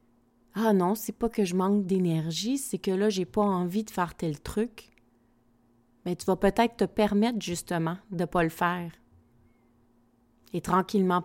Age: 30-49